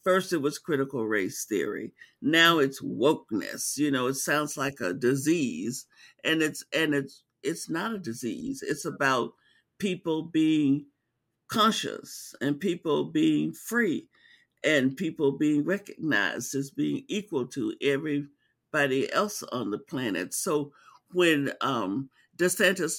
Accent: American